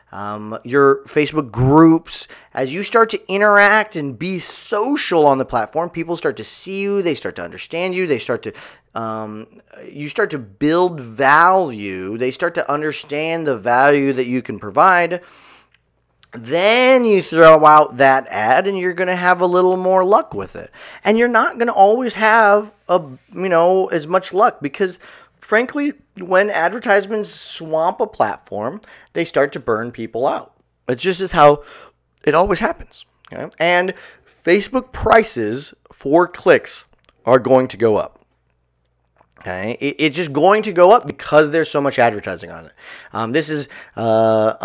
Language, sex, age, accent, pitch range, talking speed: English, male, 30-49, American, 120-180 Hz, 160 wpm